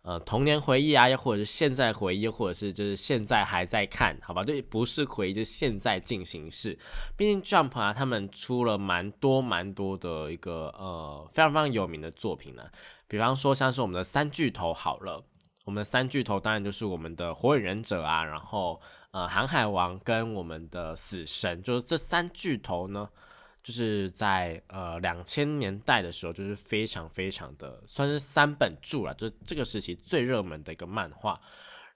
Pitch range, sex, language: 90-135 Hz, male, Chinese